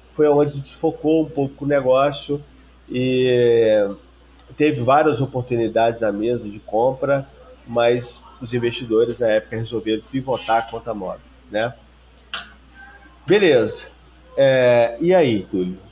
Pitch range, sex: 110-140 Hz, male